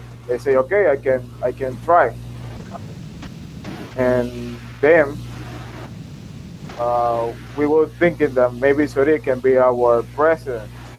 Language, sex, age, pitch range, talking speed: English, male, 20-39, 120-145 Hz, 115 wpm